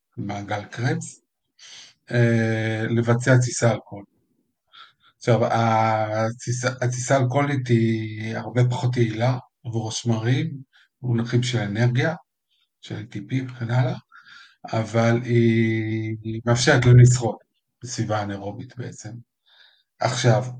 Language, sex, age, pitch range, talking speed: Hebrew, male, 50-69, 115-125 Hz, 95 wpm